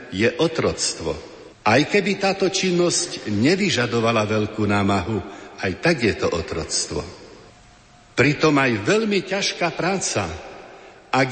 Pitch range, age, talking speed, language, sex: 130-175 Hz, 60-79, 105 wpm, Slovak, male